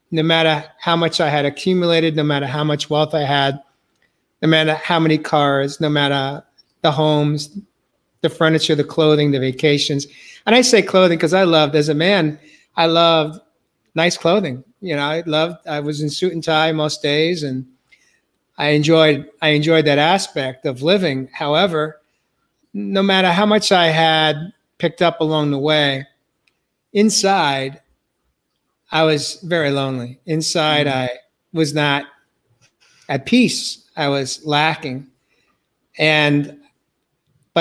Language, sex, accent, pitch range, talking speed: English, male, American, 145-170 Hz, 145 wpm